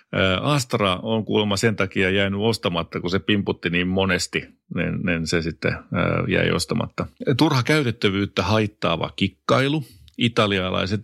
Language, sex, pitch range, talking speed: Finnish, male, 90-115 Hz, 120 wpm